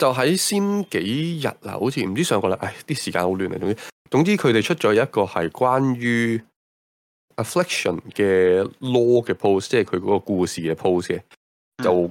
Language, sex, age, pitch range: Chinese, male, 20-39, 90-135 Hz